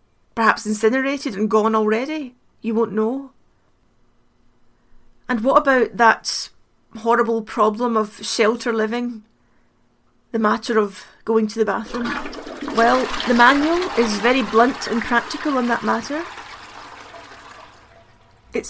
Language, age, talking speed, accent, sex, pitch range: English, 30-49, 115 wpm, British, female, 220-260 Hz